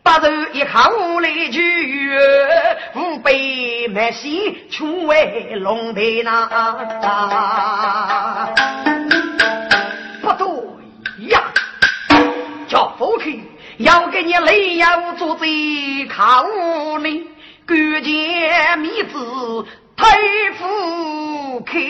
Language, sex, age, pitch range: Chinese, female, 40-59, 275-350 Hz